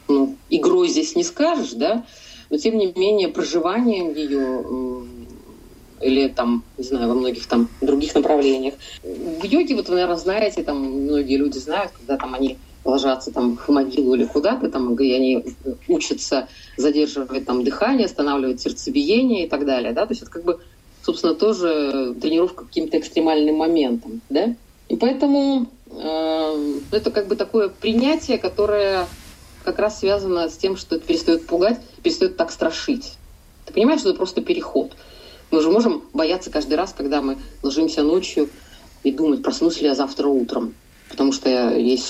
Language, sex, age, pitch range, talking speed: Russian, female, 30-49, 140-225 Hz, 160 wpm